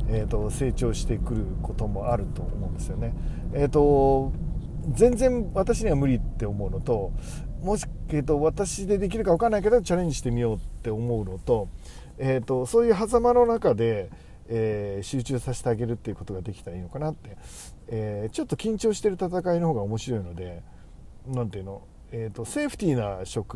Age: 40-59